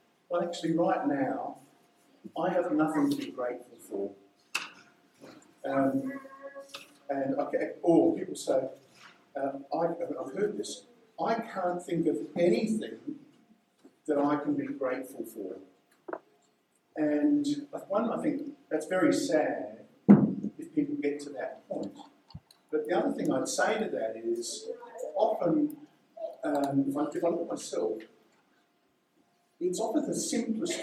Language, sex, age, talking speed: English, male, 50-69, 130 wpm